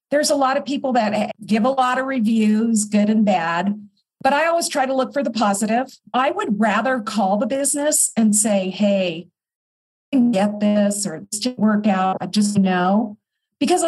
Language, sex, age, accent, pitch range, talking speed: English, female, 50-69, American, 205-260 Hz, 200 wpm